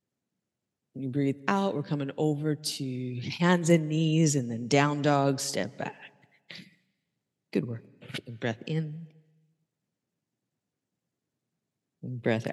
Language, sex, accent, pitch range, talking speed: English, female, American, 150-205 Hz, 100 wpm